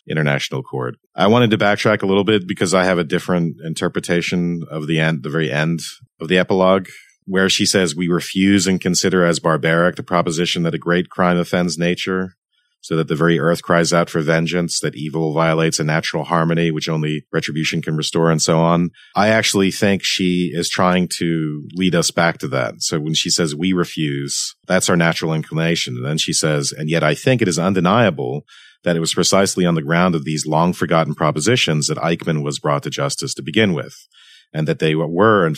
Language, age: English, 40-59